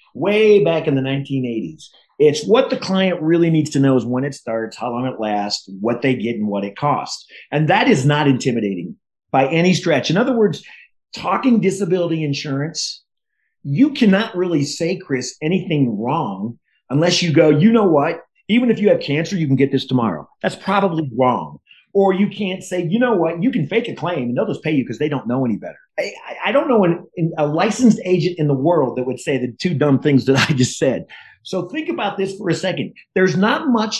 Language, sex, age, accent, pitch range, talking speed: English, male, 40-59, American, 135-195 Hz, 220 wpm